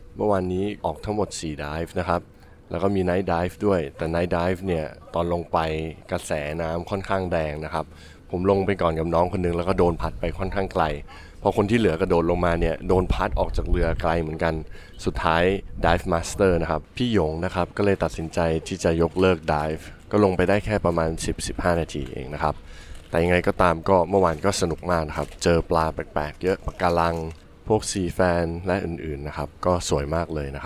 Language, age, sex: Thai, 20-39, male